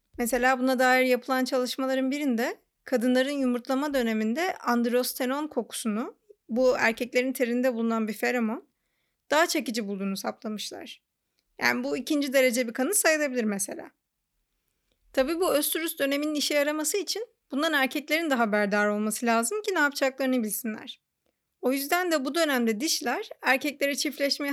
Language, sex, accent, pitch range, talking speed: Turkish, female, native, 225-280 Hz, 130 wpm